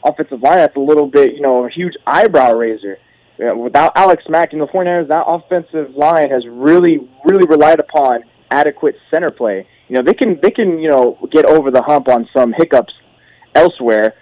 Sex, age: male, 20-39